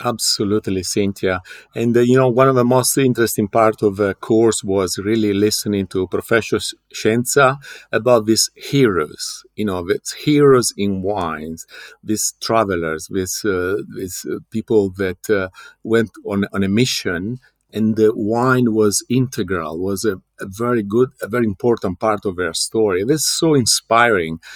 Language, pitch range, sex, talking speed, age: English, 105-140 Hz, male, 155 wpm, 50-69